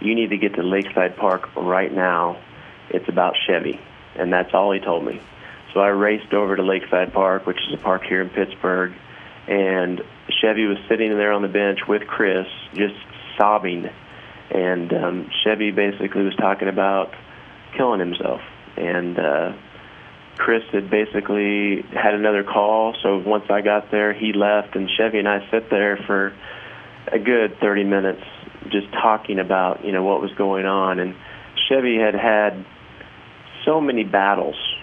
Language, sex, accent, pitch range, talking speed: English, male, American, 95-110 Hz, 165 wpm